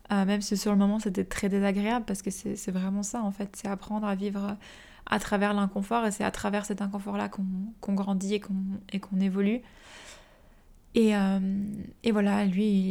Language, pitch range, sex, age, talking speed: French, 195-210 Hz, female, 20-39, 200 wpm